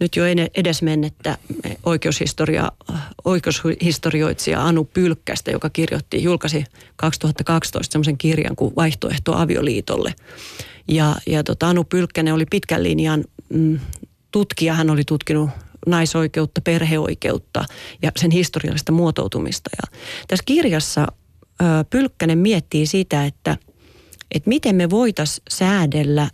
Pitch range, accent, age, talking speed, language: 155-180 Hz, native, 30-49, 110 wpm, Finnish